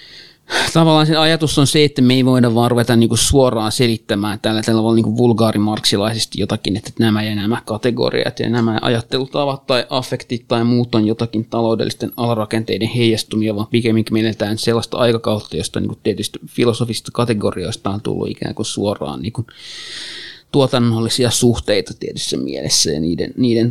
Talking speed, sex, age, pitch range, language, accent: 145 wpm, male, 30-49, 105-120 Hz, Finnish, native